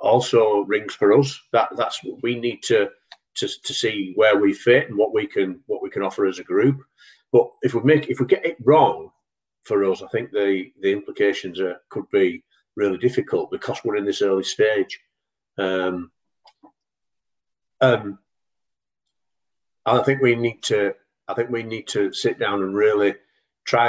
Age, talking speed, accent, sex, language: 40-59, 180 wpm, British, male, English